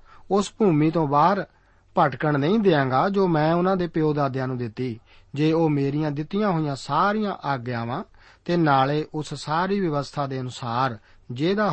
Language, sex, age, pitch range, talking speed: Punjabi, male, 50-69, 125-170 Hz, 155 wpm